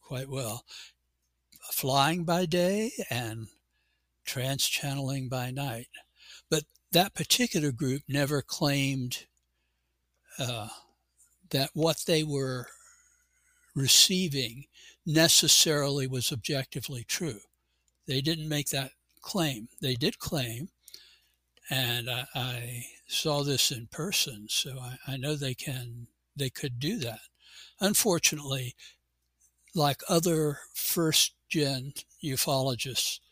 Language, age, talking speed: English, 60-79, 100 wpm